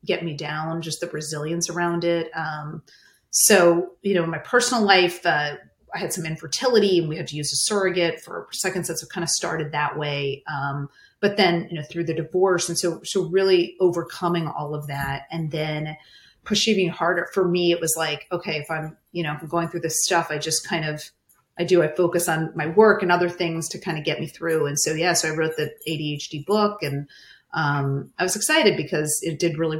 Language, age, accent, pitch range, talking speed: English, 30-49, American, 150-175 Hz, 225 wpm